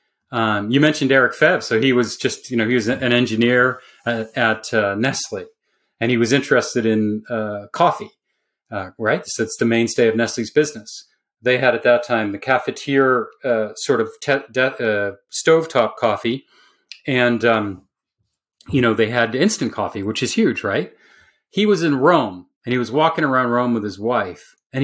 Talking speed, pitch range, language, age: 185 wpm, 115-145 Hz, English, 30-49